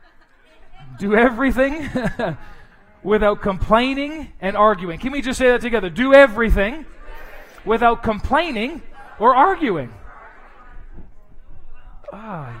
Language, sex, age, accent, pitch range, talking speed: English, male, 30-49, American, 160-220 Hz, 90 wpm